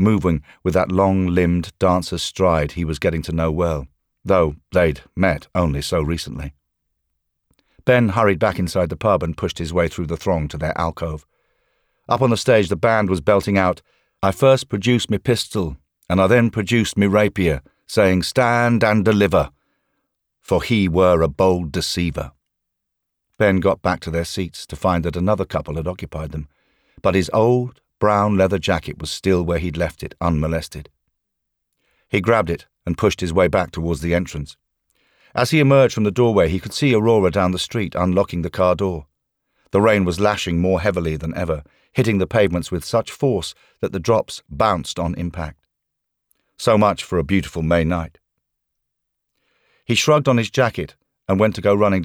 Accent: British